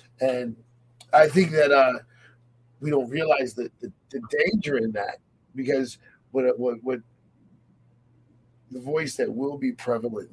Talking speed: 140 wpm